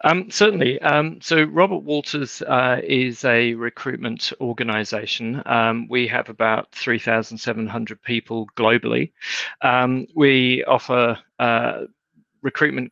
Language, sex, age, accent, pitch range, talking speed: English, male, 40-59, British, 115-130 Hz, 105 wpm